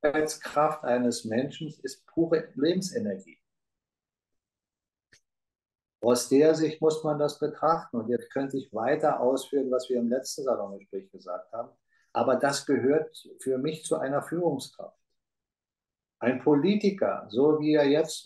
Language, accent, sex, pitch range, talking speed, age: German, German, male, 125-160 Hz, 130 wpm, 50-69